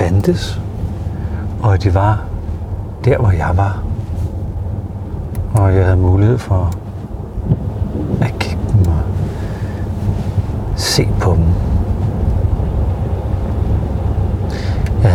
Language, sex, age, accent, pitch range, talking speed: Danish, male, 60-79, native, 90-100 Hz, 85 wpm